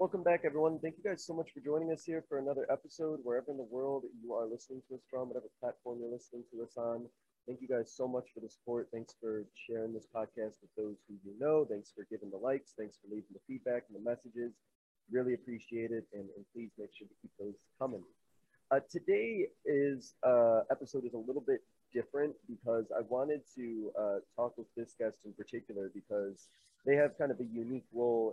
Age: 30-49